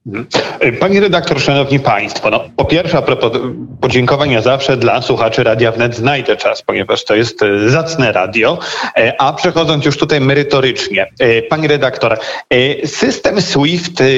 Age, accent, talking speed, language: 40-59, native, 125 wpm, Polish